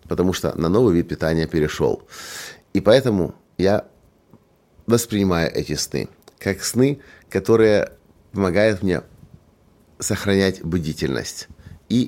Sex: male